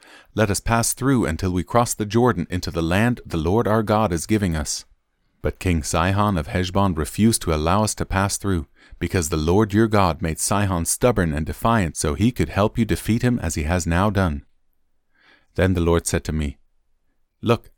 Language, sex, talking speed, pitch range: English, male, 205 wpm, 85-105 Hz